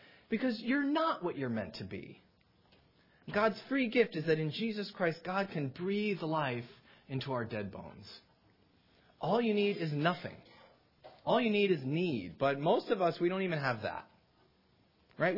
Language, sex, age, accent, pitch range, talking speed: English, male, 30-49, American, 130-200 Hz, 170 wpm